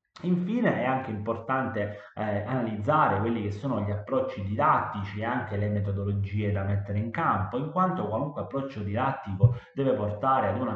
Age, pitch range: 30-49, 100-120 Hz